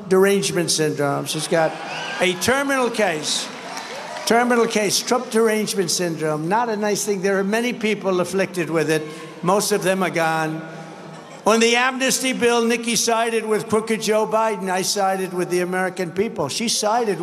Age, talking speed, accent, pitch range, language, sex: 60-79, 160 wpm, American, 160-230 Hz, English, male